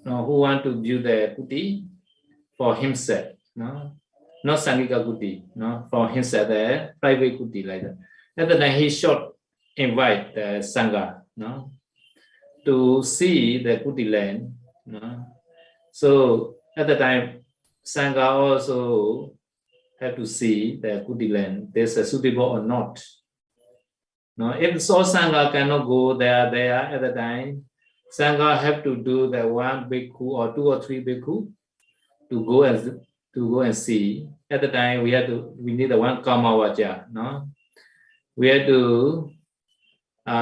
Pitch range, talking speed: 120-145 Hz, 145 wpm